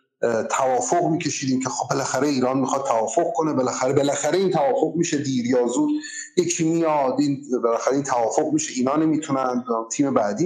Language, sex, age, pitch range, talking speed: Persian, male, 30-49, 125-170 Hz, 145 wpm